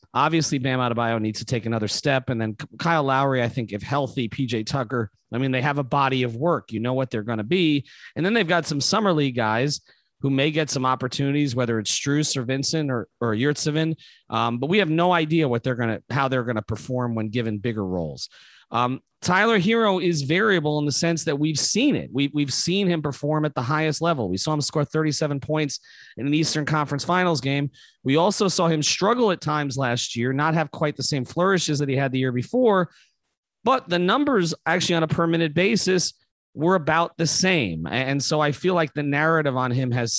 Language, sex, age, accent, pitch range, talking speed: English, male, 30-49, American, 125-165 Hz, 220 wpm